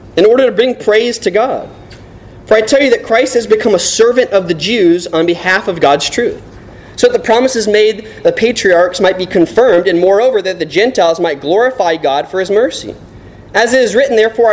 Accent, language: American, English